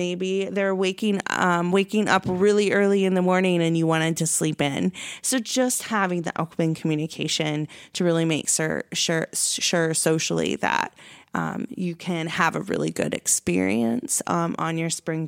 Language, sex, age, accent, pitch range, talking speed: English, female, 20-39, American, 175-210 Hz, 170 wpm